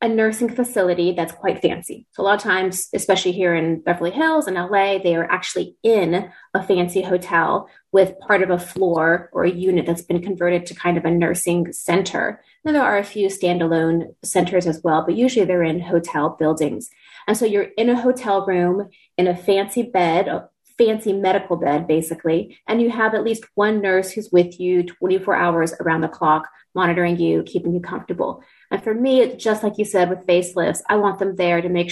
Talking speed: 205 wpm